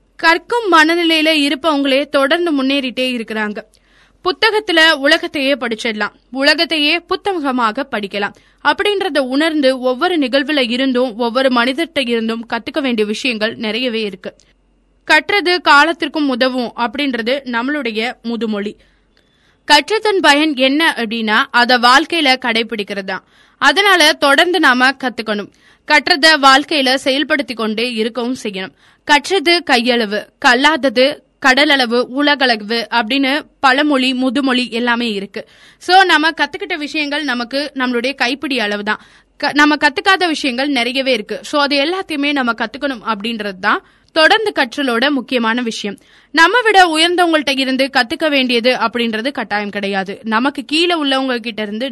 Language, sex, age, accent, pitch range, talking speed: Tamil, female, 20-39, native, 235-305 Hz, 110 wpm